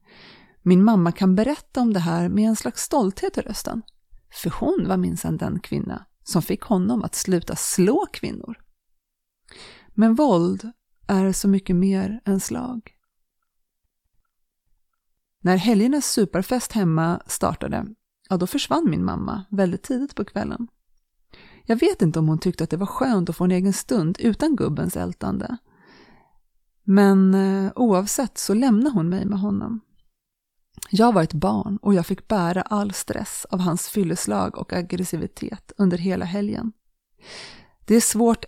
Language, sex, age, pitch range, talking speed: Swedish, female, 30-49, 180-225 Hz, 150 wpm